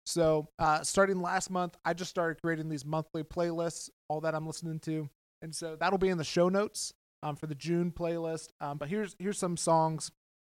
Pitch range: 150-175 Hz